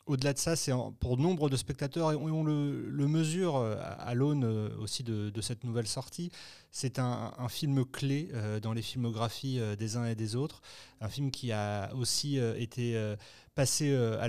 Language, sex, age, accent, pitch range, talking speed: French, male, 30-49, French, 115-140 Hz, 175 wpm